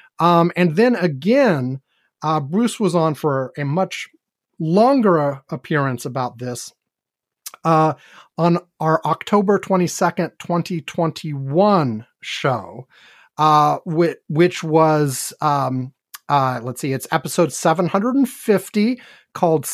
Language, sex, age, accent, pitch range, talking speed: English, male, 30-49, American, 150-185 Hz, 105 wpm